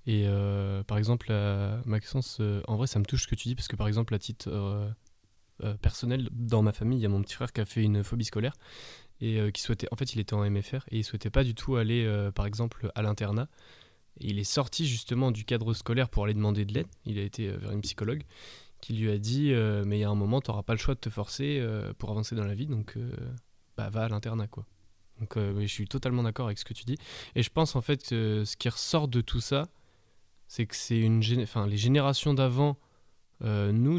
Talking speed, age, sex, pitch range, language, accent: 260 wpm, 20-39, male, 105-130 Hz, French, French